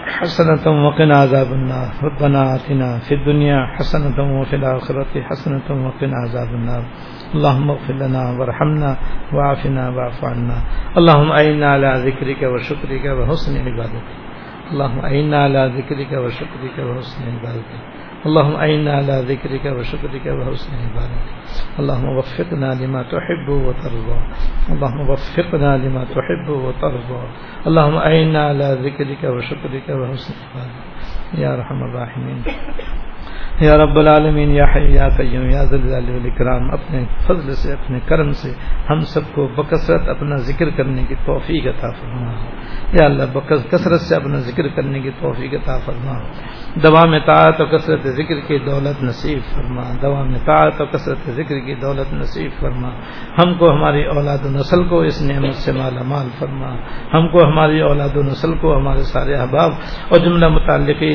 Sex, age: male, 60-79